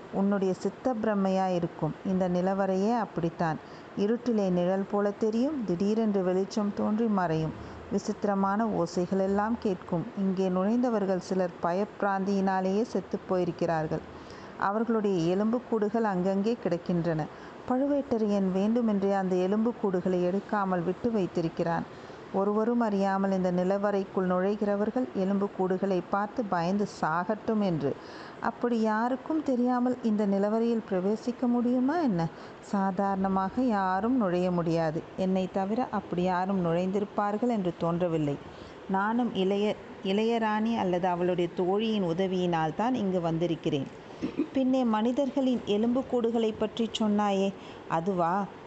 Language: Tamil